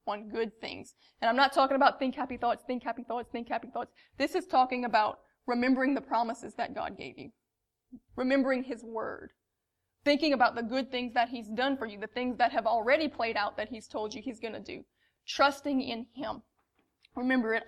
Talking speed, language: 205 wpm, English